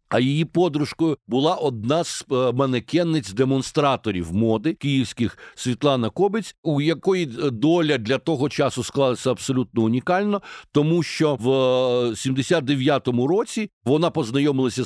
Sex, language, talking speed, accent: male, Ukrainian, 110 wpm, native